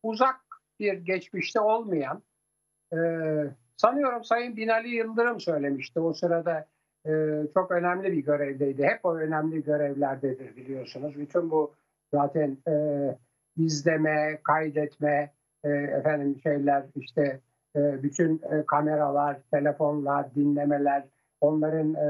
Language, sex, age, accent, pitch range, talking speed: Turkish, male, 60-79, native, 150-190 Hz, 90 wpm